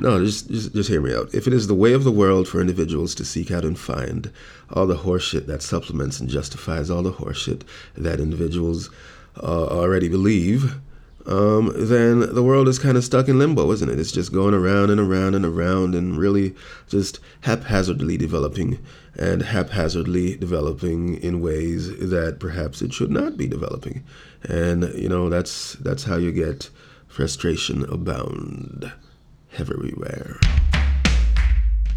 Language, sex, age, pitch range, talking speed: English, male, 30-49, 80-100 Hz, 160 wpm